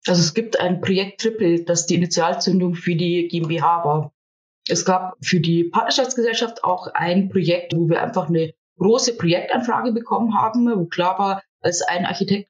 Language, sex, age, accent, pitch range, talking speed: German, female, 20-39, German, 180-225 Hz, 170 wpm